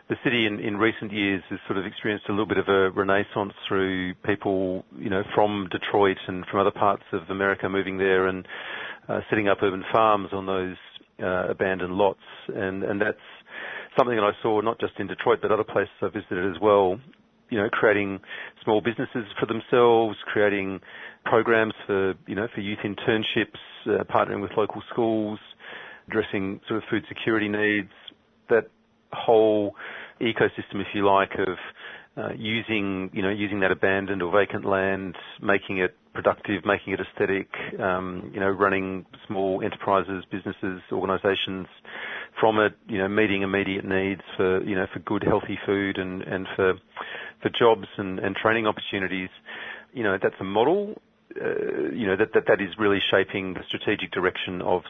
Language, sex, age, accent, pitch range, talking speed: English, male, 40-59, Australian, 95-105 Hz, 170 wpm